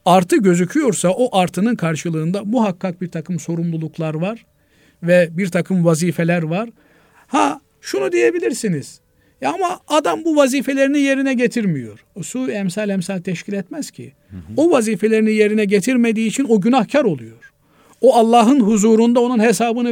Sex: male